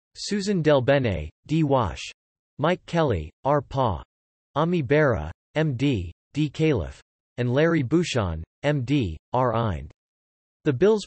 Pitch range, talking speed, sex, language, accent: 115-150 Hz, 115 wpm, male, English, American